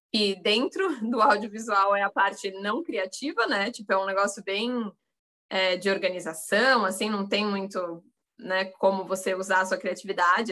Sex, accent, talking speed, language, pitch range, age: female, Brazilian, 165 wpm, Portuguese, 200-260 Hz, 20-39